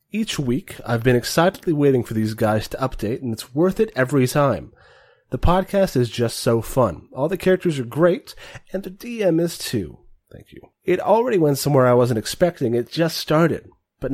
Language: English